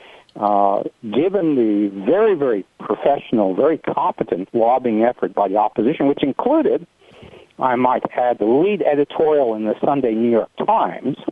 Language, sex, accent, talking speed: English, male, American, 145 wpm